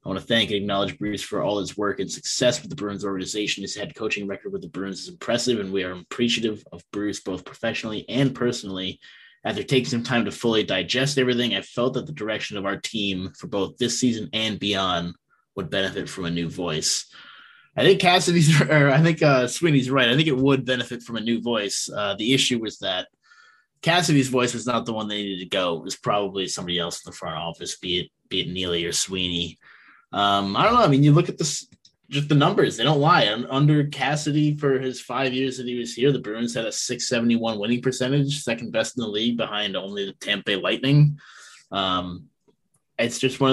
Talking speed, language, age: 220 wpm, English, 20-39